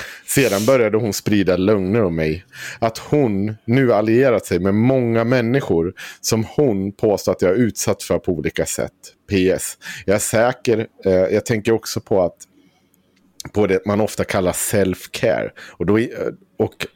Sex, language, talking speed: male, Swedish, 155 wpm